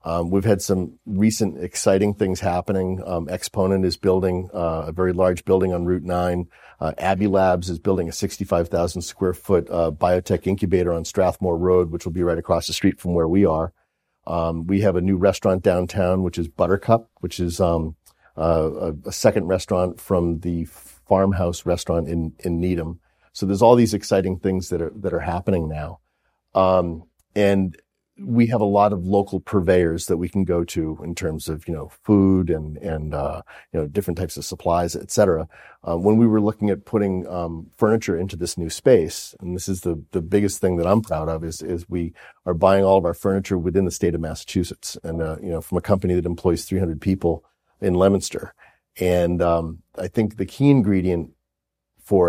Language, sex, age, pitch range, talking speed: English, male, 40-59, 85-95 Hz, 195 wpm